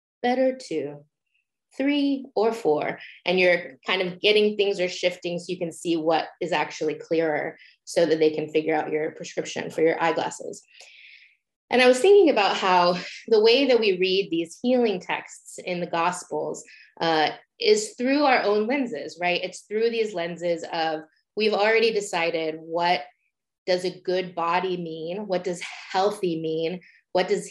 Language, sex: English, female